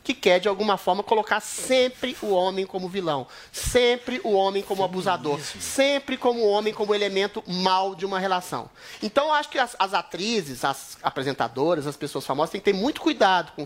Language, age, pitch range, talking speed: Portuguese, 30-49, 170-275 Hz, 195 wpm